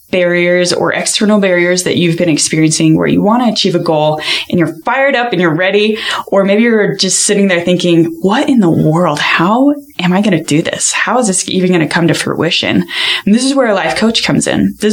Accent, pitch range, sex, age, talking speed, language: American, 165-205 Hz, female, 10-29, 235 wpm, English